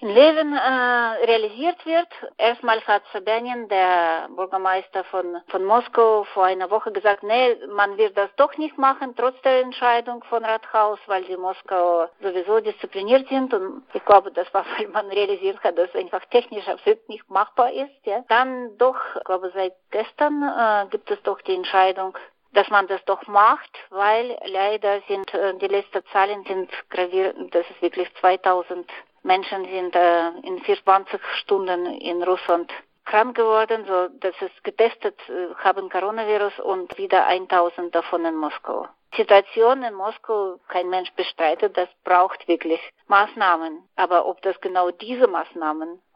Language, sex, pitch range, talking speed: German, female, 185-225 Hz, 160 wpm